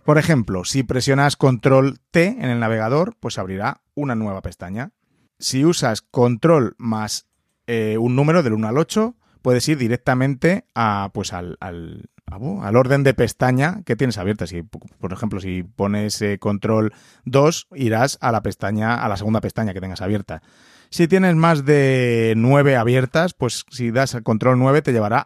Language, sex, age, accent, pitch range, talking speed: Spanish, male, 30-49, Spanish, 110-145 Hz, 165 wpm